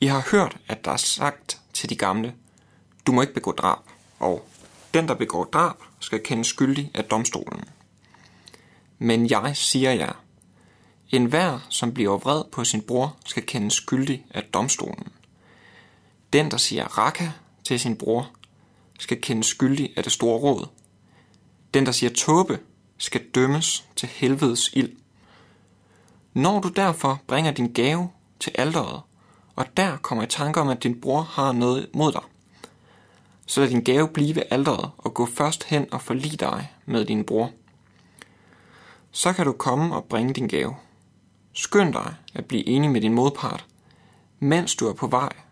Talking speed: 165 wpm